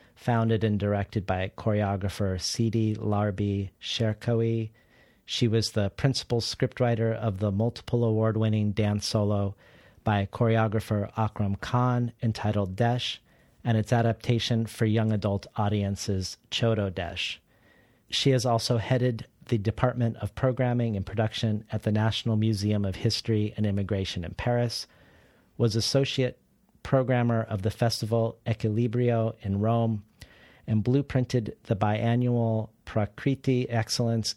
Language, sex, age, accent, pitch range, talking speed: English, male, 40-59, American, 105-120 Hz, 120 wpm